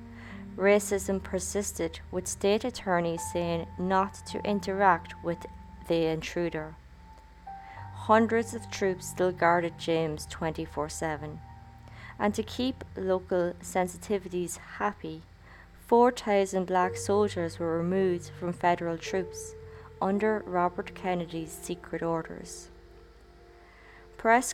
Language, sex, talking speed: English, female, 95 wpm